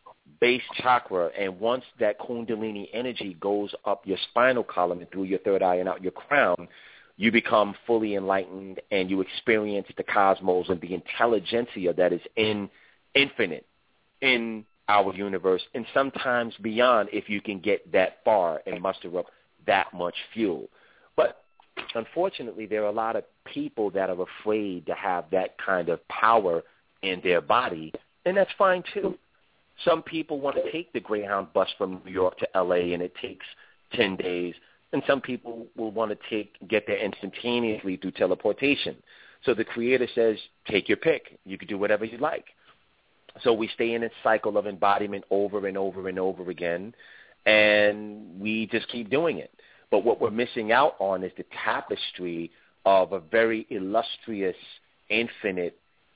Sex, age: male, 30-49